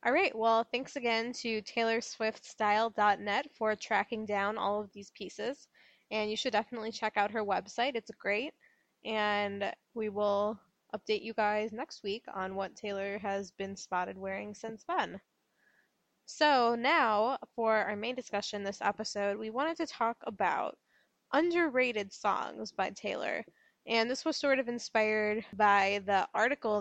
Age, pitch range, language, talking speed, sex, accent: 20-39, 205-230 Hz, English, 150 wpm, female, American